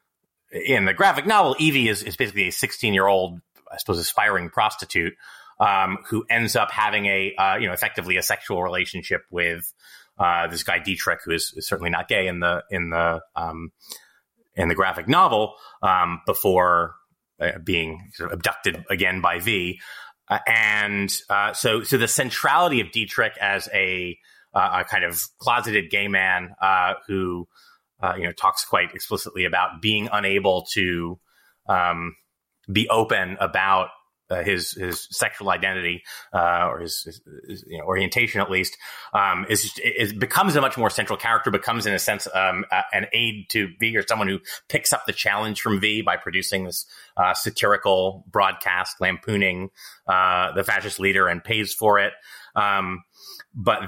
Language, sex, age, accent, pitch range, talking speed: English, male, 30-49, American, 90-105 Hz, 170 wpm